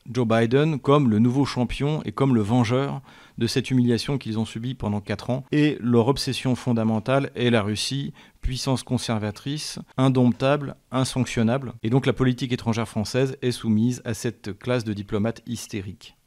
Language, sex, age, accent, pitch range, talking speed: French, male, 40-59, French, 110-130 Hz, 160 wpm